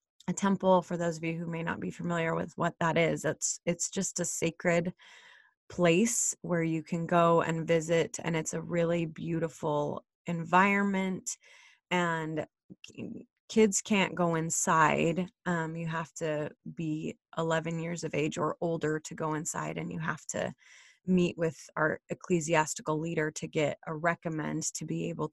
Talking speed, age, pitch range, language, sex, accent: 160 wpm, 20-39, 160-180 Hz, English, female, American